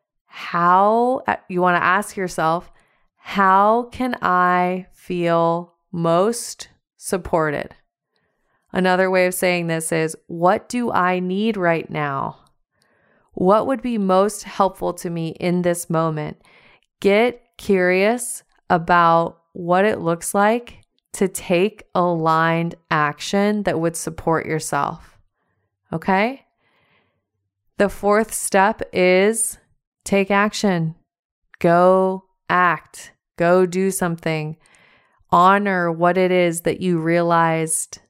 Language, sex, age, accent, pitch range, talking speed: English, female, 20-39, American, 165-190 Hz, 105 wpm